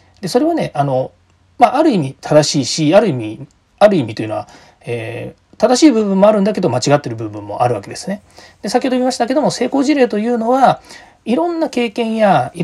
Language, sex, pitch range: Japanese, male, 165-250 Hz